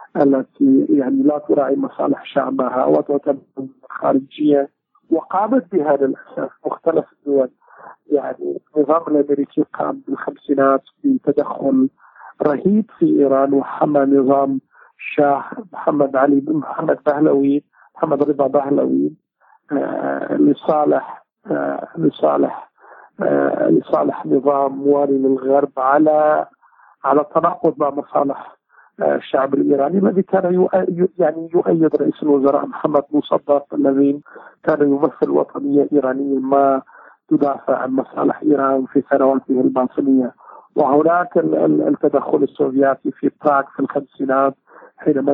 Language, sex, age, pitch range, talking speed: Arabic, male, 50-69, 135-160 Hz, 100 wpm